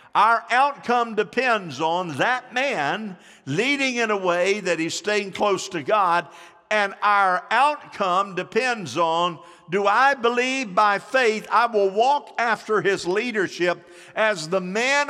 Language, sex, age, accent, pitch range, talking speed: English, male, 50-69, American, 140-210 Hz, 140 wpm